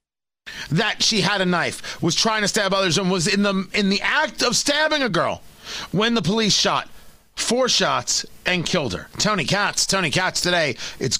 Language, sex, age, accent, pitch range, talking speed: English, male, 40-59, American, 150-220 Hz, 195 wpm